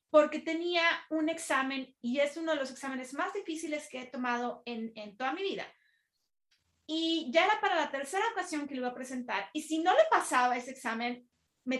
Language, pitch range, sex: Spanish, 245-320 Hz, female